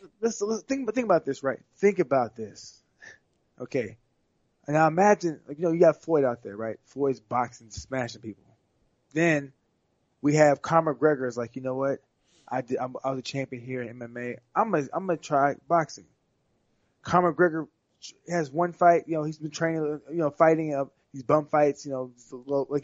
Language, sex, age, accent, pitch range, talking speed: English, male, 20-39, American, 135-175 Hz, 190 wpm